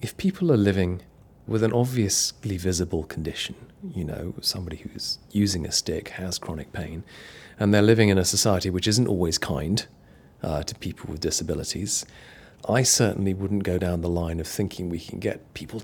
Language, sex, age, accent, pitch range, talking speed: English, male, 40-59, British, 90-110 Hz, 180 wpm